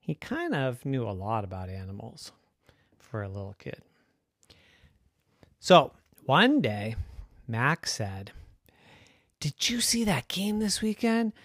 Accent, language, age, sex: American, English, 40-59, male